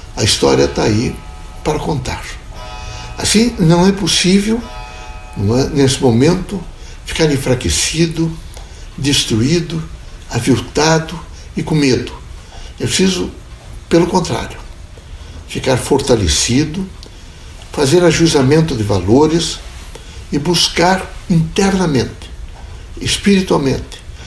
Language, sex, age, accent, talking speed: Portuguese, male, 60-79, Brazilian, 80 wpm